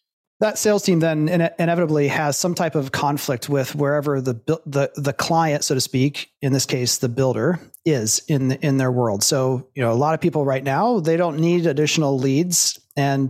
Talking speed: 205 wpm